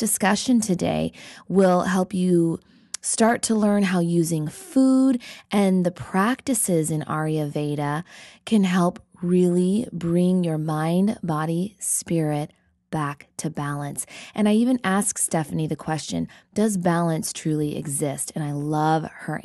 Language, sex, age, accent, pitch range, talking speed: English, female, 20-39, American, 155-200 Hz, 130 wpm